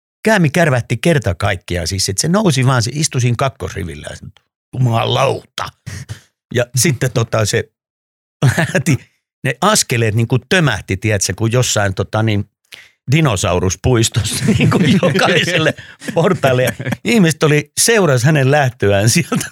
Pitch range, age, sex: 100-140 Hz, 50-69, male